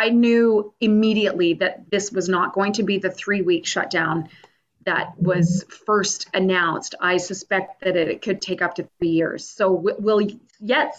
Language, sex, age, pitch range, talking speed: English, female, 30-49, 190-245 Hz, 170 wpm